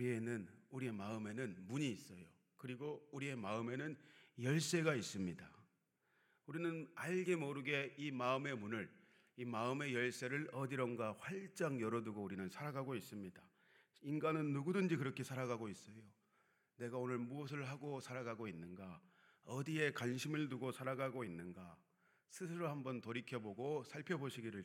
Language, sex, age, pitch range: Korean, male, 40-59, 115-145 Hz